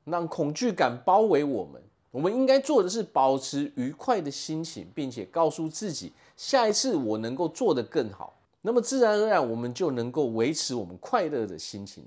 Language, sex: Chinese, male